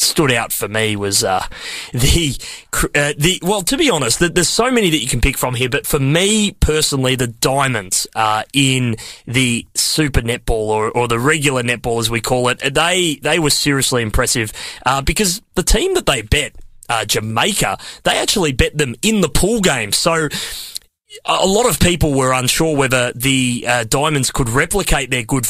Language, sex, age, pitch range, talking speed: English, male, 20-39, 120-160 Hz, 190 wpm